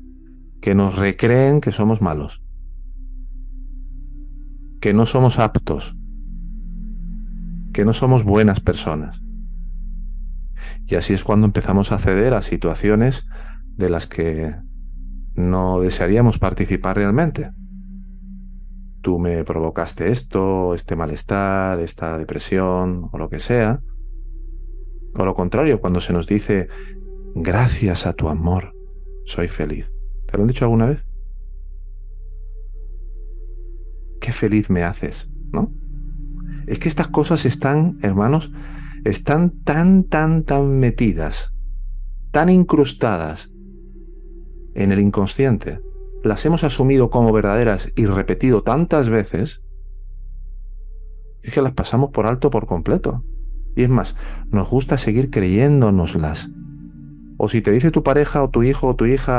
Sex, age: male, 40-59